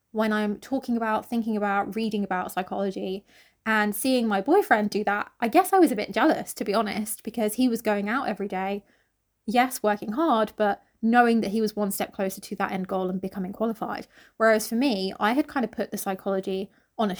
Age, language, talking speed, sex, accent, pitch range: 20-39, English, 215 wpm, female, British, 200-235 Hz